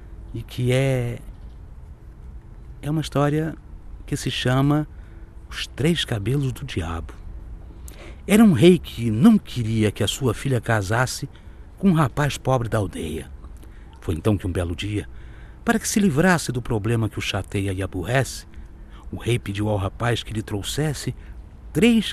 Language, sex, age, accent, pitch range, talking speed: Portuguese, male, 60-79, Brazilian, 90-145 Hz, 155 wpm